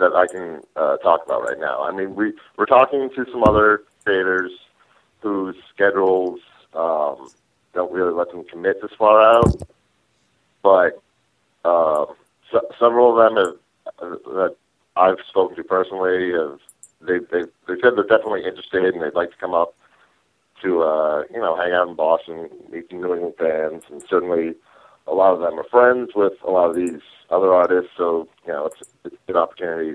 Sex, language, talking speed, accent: male, English, 180 wpm, American